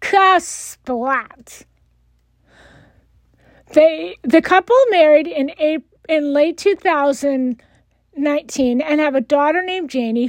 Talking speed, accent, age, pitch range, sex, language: 105 wpm, American, 50-69, 255-355 Hz, female, English